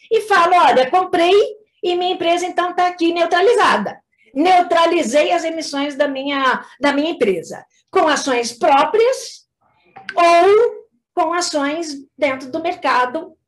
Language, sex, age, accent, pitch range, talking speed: Portuguese, female, 50-69, Brazilian, 260-365 Hz, 120 wpm